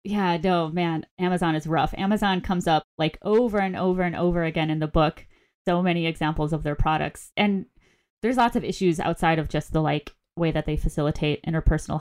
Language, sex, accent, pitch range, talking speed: English, female, American, 155-175 Hz, 200 wpm